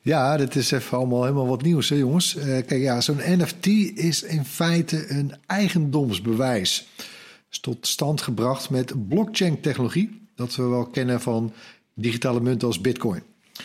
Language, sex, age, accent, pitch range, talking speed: Dutch, male, 50-69, Dutch, 120-165 Hz, 155 wpm